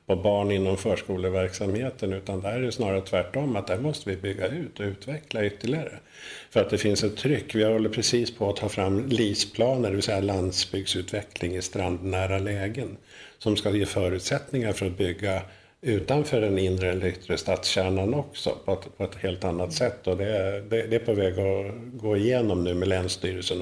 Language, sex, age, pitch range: Swedish, male, 50-69, 95-110 Hz